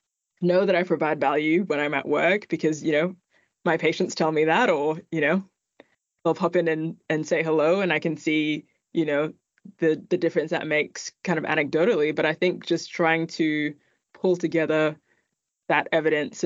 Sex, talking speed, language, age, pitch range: female, 185 wpm, English, 20-39, 150-175 Hz